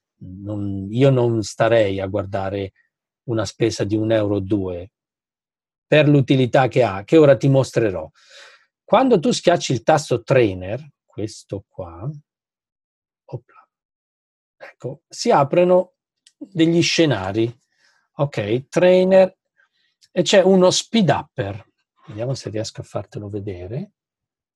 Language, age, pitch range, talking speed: Italian, 40-59, 110-175 Hz, 115 wpm